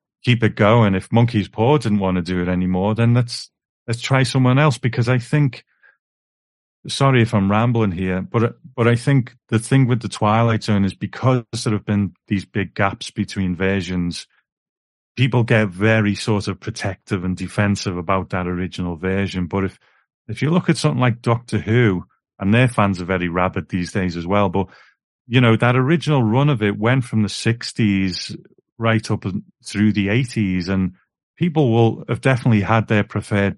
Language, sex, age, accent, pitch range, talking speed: English, male, 40-59, British, 95-120 Hz, 185 wpm